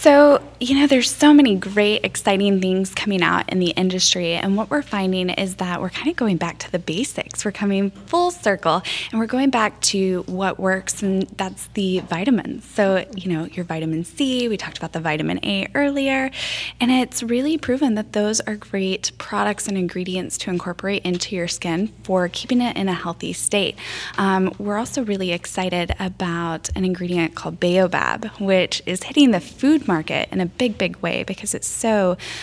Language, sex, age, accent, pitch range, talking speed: English, female, 10-29, American, 175-210 Hz, 195 wpm